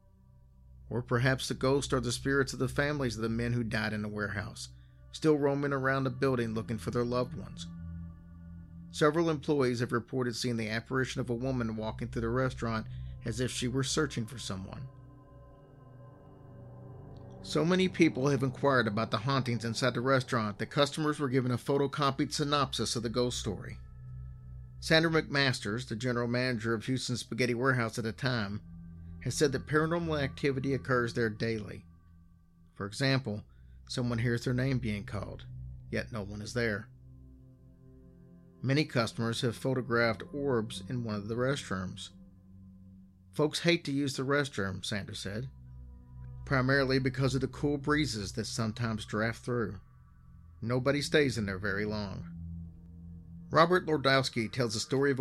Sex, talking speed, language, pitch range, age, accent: male, 155 wpm, English, 95-135 Hz, 40-59, American